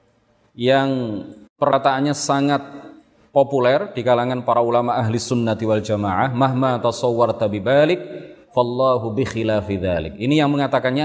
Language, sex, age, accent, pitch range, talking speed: Indonesian, male, 30-49, native, 120-150 Hz, 90 wpm